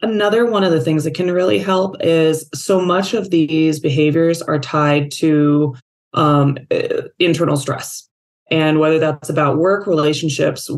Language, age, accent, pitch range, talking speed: English, 20-39, American, 145-180 Hz, 150 wpm